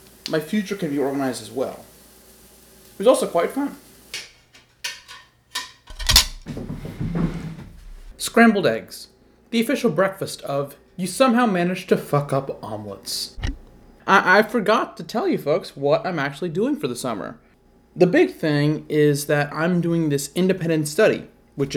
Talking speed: 140 wpm